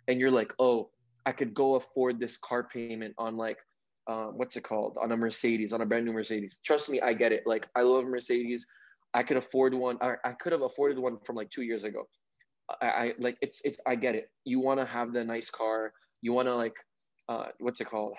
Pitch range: 115-135 Hz